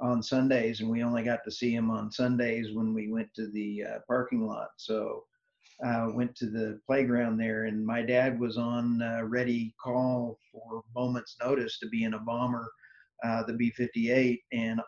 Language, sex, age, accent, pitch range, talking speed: English, male, 50-69, American, 115-130 Hz, 195 wpm